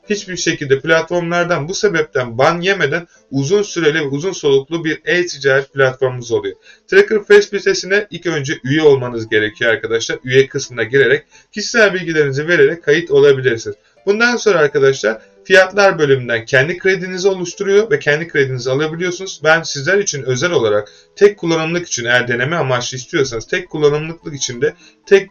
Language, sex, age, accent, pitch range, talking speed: Turkish, male, 30-49, native, 135-200 Hz, 145 wpm